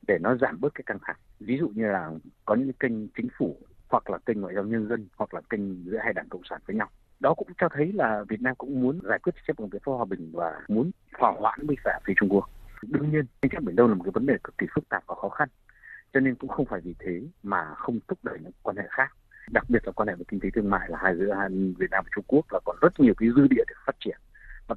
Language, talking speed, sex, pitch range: Vietnamese, 295 wpm, male, 105-150 Hz